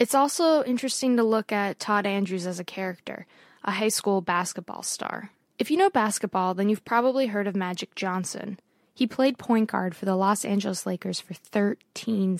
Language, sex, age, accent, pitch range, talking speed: English, female, 20-39, American, 195-230 Hz, 185 wpm